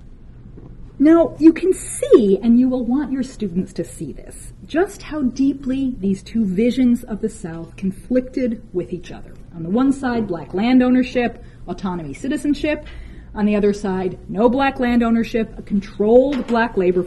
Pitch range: 185-265 Hz